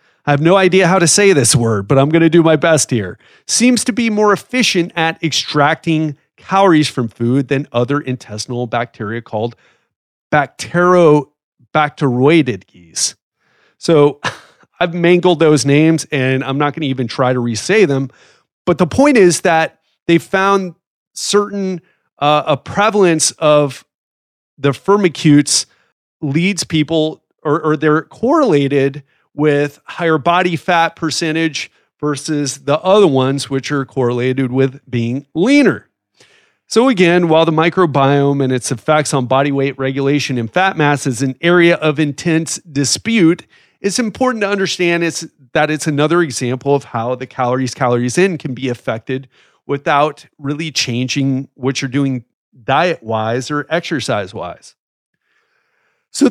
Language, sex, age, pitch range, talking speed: English, male, 30-49, 135-170 Hz, 145 wpm